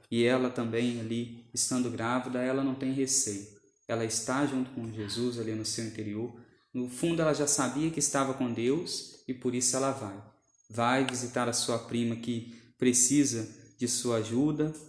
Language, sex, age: Portuguese, male, 20-39